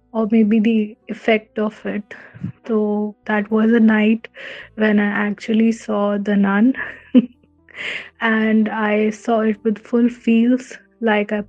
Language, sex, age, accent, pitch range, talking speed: English, female, 20-39, Indian, 210-225 Hz, 135 wpm